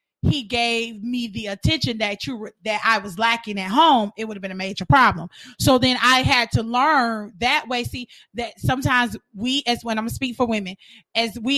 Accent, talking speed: American, 220 wpm